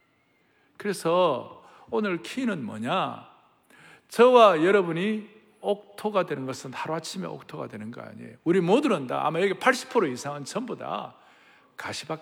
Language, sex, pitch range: Korean, male, 205-295 Hz